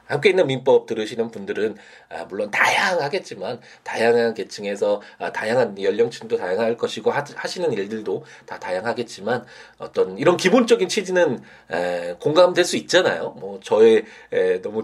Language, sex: Korean, male